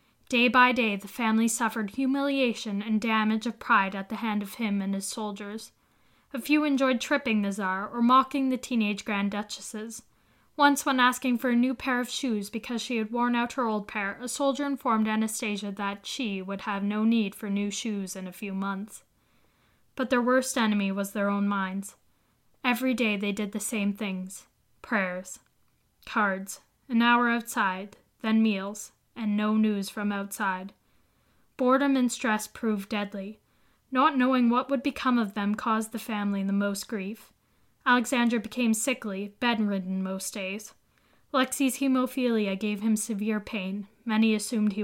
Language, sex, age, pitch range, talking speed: English, female, 10-29, 200-245 Hz, 165 wpm